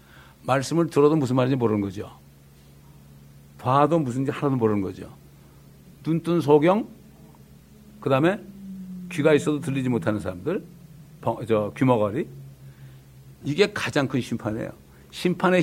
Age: 60-79